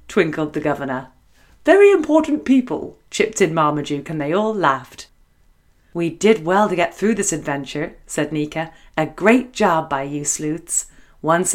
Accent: British